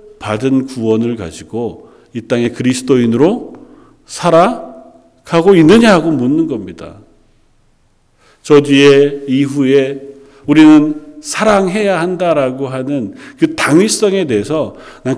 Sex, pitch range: male, 115-195 Hz